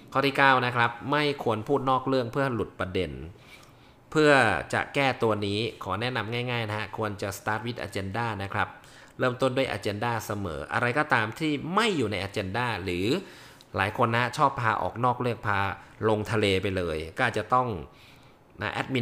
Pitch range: 105-135 Hz